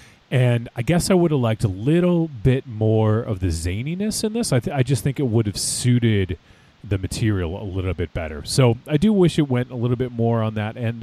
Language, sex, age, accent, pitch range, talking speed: English, male, 30-49, American, 95-120 Hz, 240 wpm